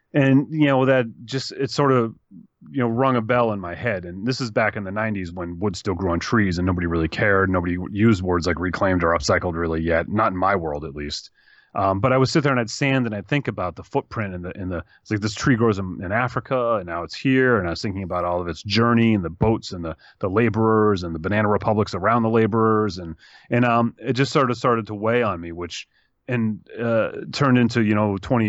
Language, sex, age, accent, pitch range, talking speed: English, male, 30-49, American, 95-120 Hz, 255 wpm